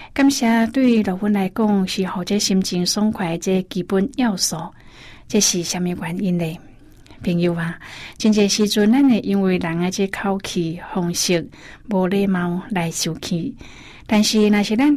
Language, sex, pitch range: Chinese, female, 175-215 Hz